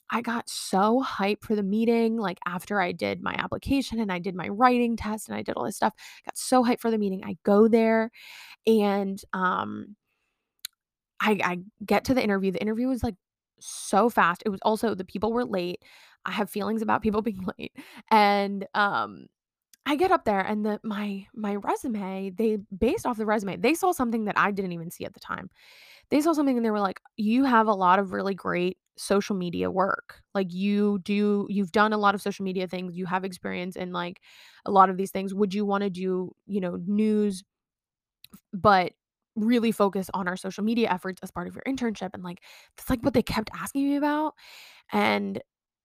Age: 20-39